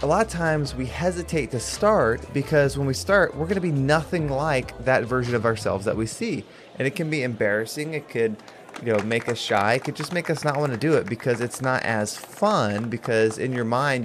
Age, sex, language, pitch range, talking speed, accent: 30-49, male, English, 115-150 Hz, 240 wpm, American